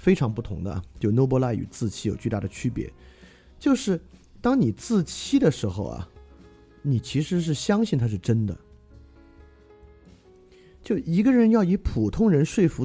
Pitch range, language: 95-155 Hz, Chinese